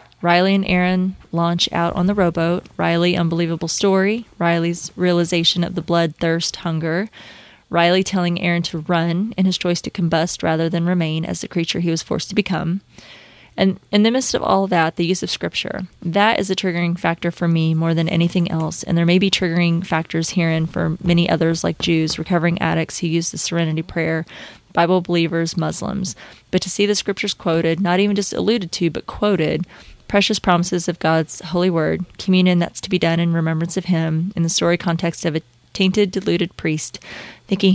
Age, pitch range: 20-39, 165-185 Hz